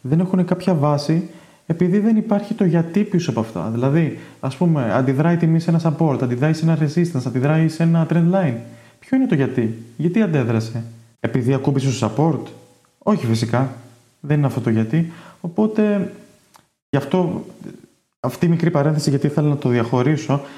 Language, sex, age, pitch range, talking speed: Greek, male, 20-39, 135-170 Hz, 165 wpm